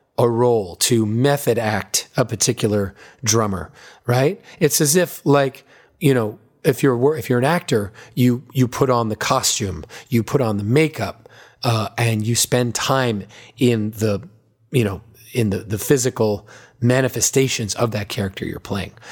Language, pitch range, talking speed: English, 110-140 Hz, 160 wpm